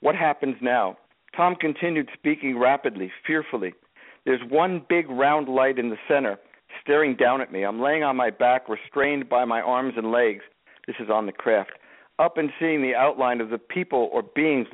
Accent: American